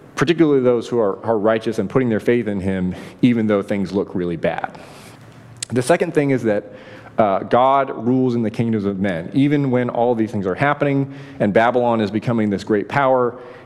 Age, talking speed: 30-49, 200 wpm